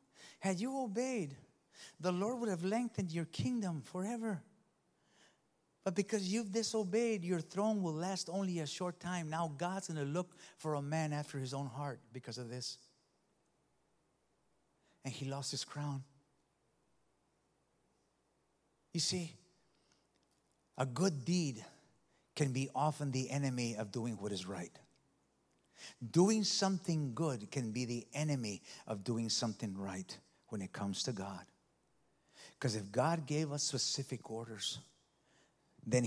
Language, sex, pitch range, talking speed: English, male, 115-165 Hz, 135 wpm